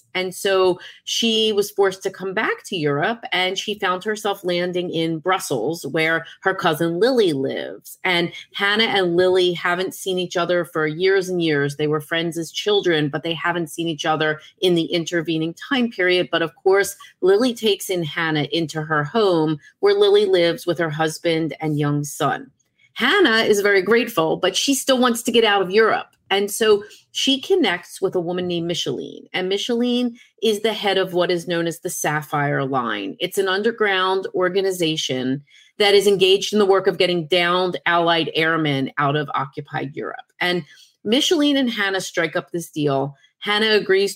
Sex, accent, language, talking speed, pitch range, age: female, American, English, 180 wpm, 160-200 Hz, 30-49